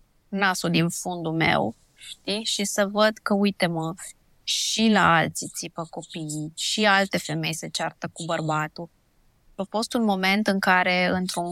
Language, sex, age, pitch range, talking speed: Romanian, female, 20-39, 175-220 Hz, 150 wpm